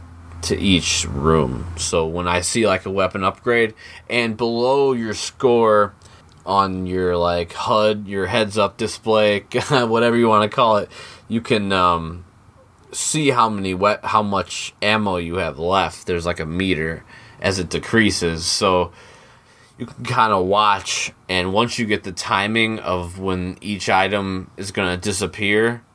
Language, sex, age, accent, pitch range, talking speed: English, male, 20-39, American, 95-115 Hz, 160 wpm